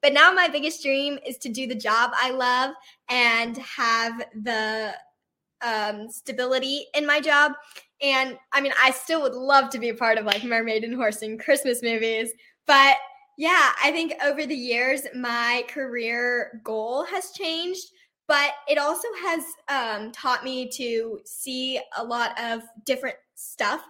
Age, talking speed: 10-29, 165 wpm